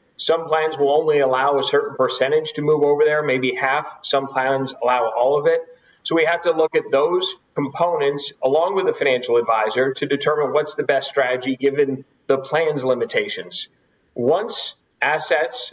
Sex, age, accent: male, 40-59, American